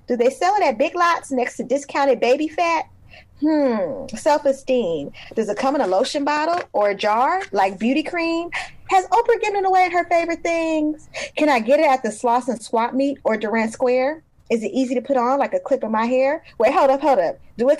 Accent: American